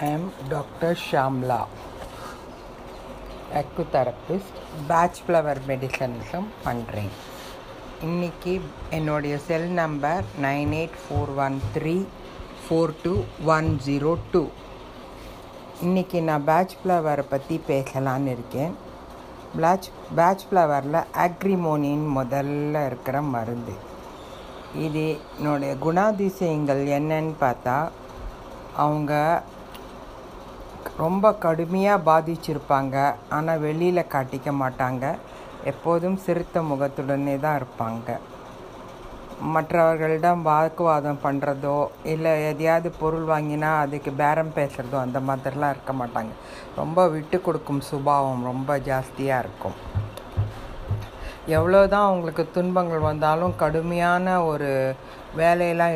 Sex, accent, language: female, native, Tamil